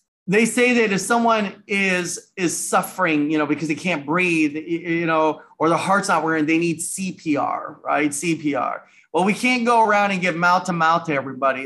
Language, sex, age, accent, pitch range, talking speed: English, male, 30-49, American, 160-205 Hz, 195 wpm